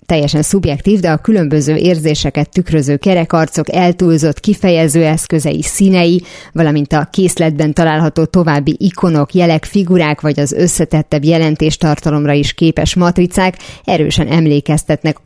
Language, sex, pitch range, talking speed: Hungarian, female, 150-185 Hz, 115 wpm